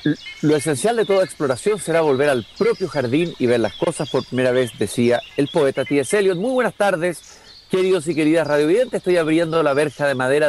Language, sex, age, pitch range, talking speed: Spanish, male, 50-69, 140-205 Hz, 195 wpm